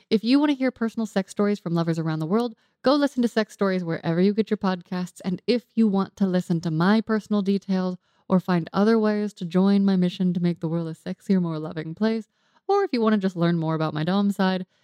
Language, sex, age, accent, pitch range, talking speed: English, female, 20-39, American, 175-220 Hz, 250 wpm